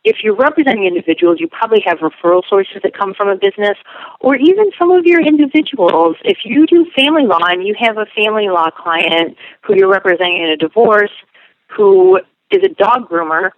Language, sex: English, female